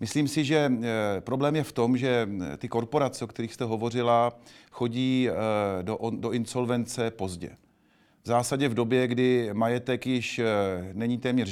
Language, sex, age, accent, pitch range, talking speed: Czech, male, 40-59, native, 115-135 Hz, 145 wpm